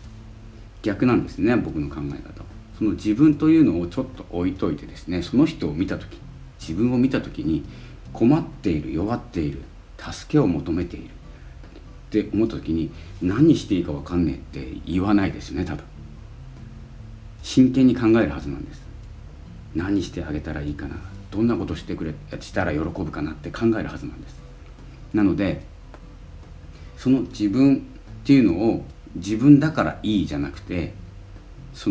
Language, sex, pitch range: Japanese, male, 80-110 Hz